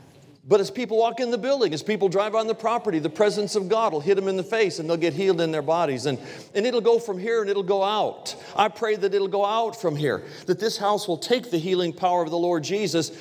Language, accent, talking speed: English, American, 275 wpm